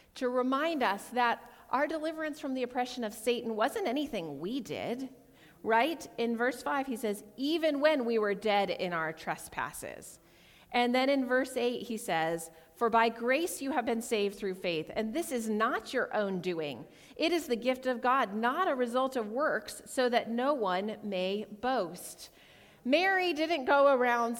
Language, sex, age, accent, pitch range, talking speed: English, female, 40-59, American, 195-280 Hz, 180 wpm